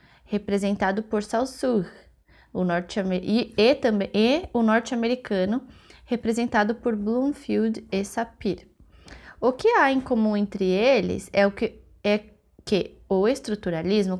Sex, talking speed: female, 100 wpm